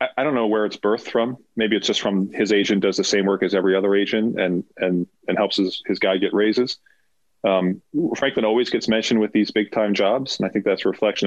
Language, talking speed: English, 245 wpm